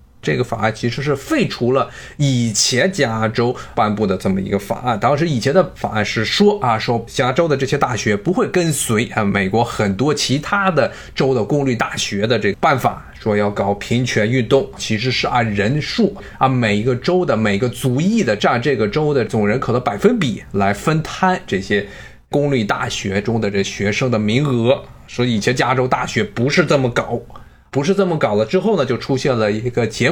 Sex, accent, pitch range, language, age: male, native, 110-145 Hz, Chinese, 20-39